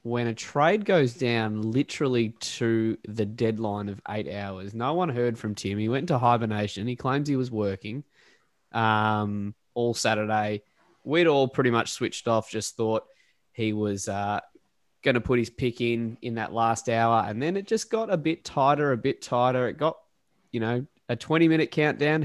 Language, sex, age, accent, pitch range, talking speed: English, male, 20-39, Australian, 110-135 Hz, 180 wpm